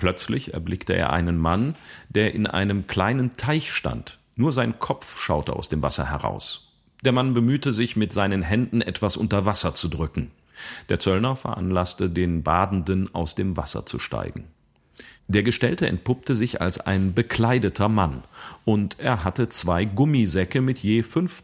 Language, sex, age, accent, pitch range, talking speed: German, male, 40-59, German, 85-115 Hz, 160 wpm